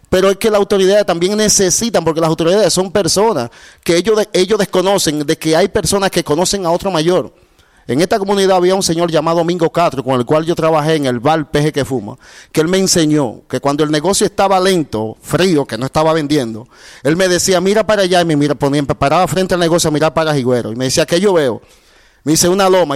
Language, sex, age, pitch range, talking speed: Spanish, male, 30-49, 155-190 Hz, 230 wpm